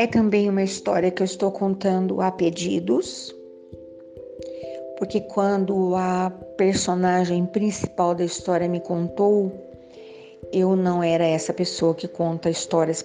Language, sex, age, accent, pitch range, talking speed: Portuguese, female, 50-69, Brazilian, 170-220 Hz, 125 wpm